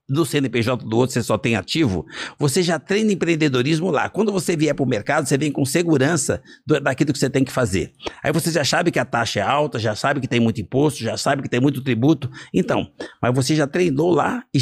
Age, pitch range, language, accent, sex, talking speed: 60-79, 120-155 Hz, Portuguese, Brazilian, male, 235 wpm